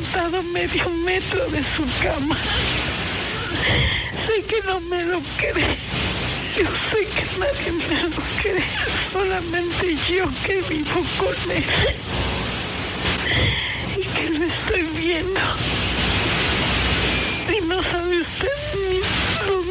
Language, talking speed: Spanish, 105 wpm